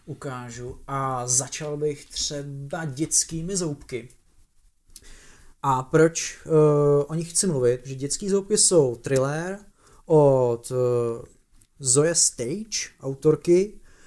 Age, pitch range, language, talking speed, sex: 30-49, 130-155 Hz, Czech, 100 wpm, male